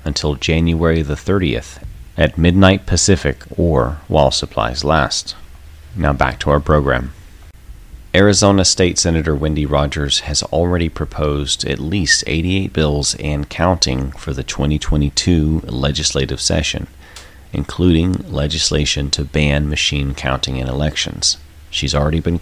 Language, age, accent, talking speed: English, 30-49, American, 125 wpm